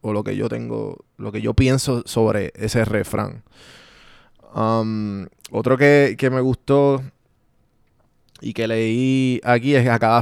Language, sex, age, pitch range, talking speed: Spanish, male, 20-39, 110-125 Hz, 155 wpm